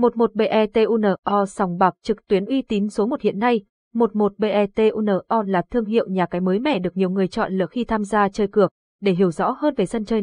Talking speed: 210 wpm